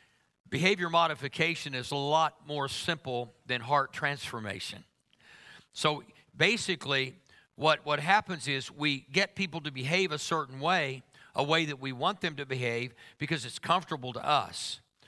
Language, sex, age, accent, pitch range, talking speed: English, male, 50-69, American, 130-170 Hz, 145 wpm